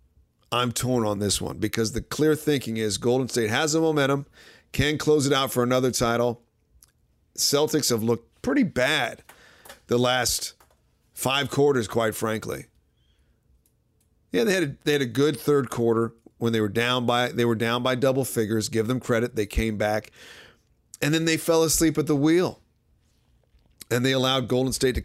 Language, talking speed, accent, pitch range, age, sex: English, 175 wpm, American, 110-135 Hz, 40-59, male